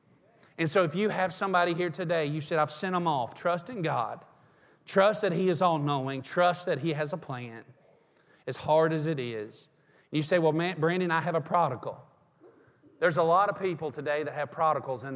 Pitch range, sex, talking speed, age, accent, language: 135-165 Hz, male, 200 wpm, 40-59, American, English